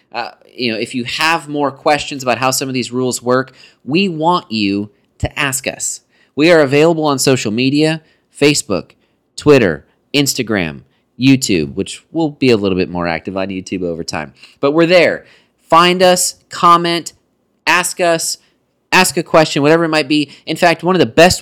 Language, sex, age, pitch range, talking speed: English, male, 30-49, 120-155 Hz, 180 wpm